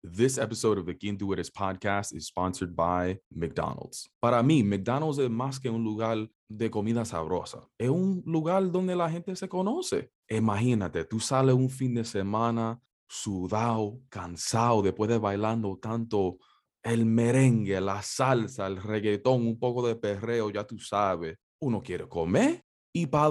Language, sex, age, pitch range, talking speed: English, male, 20-39, 100-140 Hz, 160 wpm